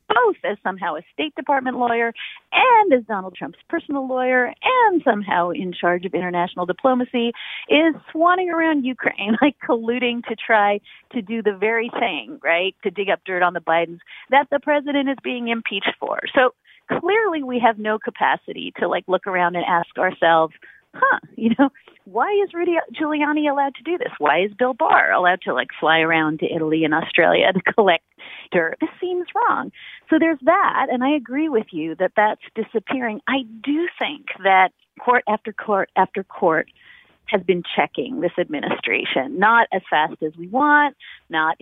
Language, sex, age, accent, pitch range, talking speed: English, female, 40-59, American, 185-280 Hz, 175 wpm